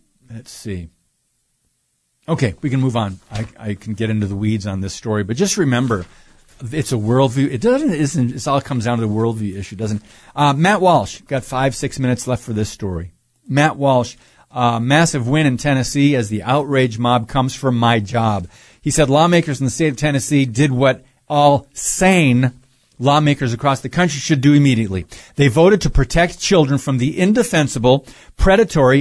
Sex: male